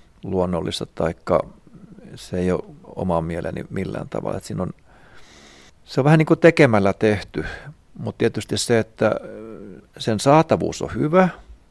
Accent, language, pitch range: native, Finnish, 100-130 Hz